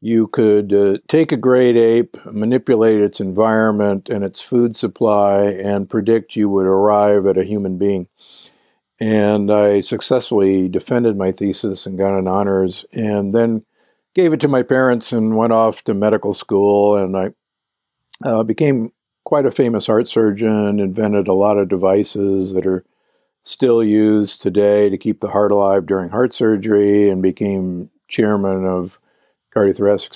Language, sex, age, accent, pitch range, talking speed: English, male, 50-69, American, 100-115 Hz, 155 wpm